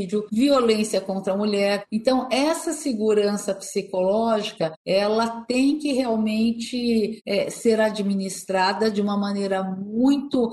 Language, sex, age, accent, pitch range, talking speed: Portuguese, female, 50-69, Brazilian, 205-250 Hz, 105 wpm